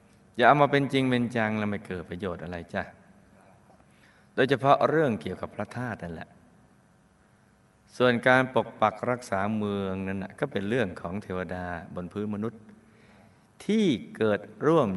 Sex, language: male, Thai